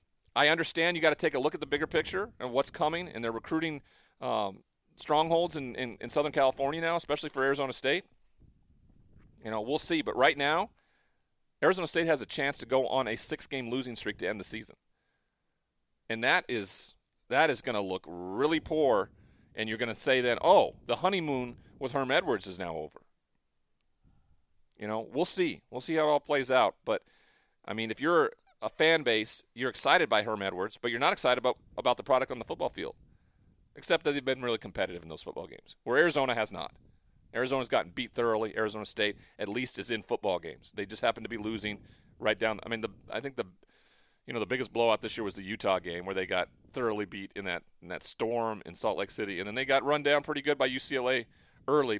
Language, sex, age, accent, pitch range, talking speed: English, male, 40-59, American, 110-145 Hz, 220 wpm